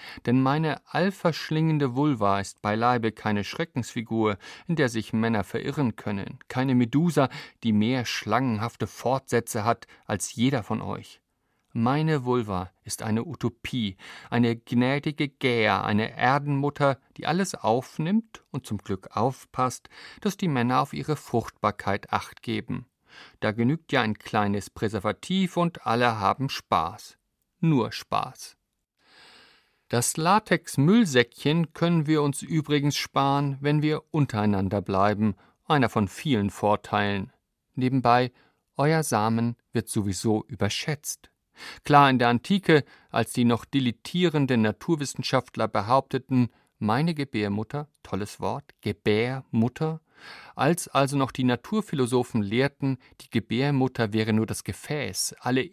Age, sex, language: 50-69, male, German